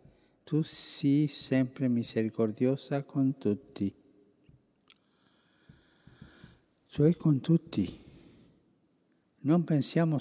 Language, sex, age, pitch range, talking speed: Italian, male, 60-79, 120-150 Hz, 65 wpm